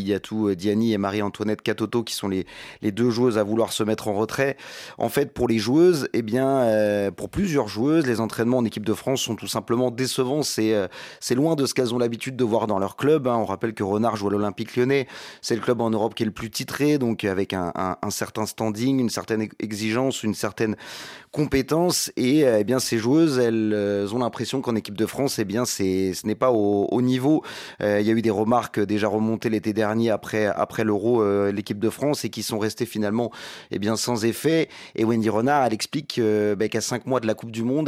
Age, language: 30-49, French